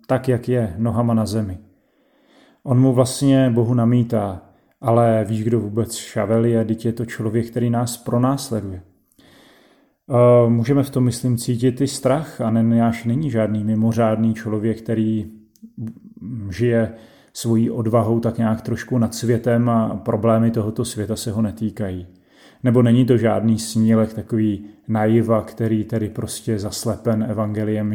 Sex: male